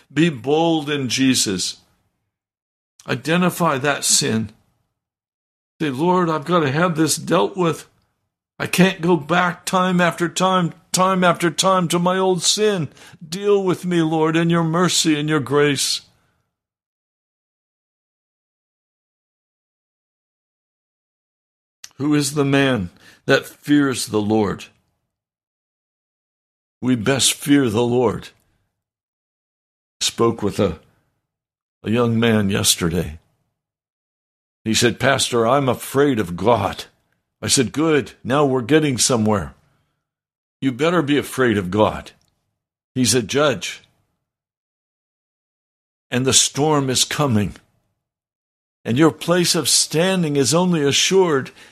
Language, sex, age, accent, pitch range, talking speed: English, male, 60-79, American, 110-165 Hz, 110 wpm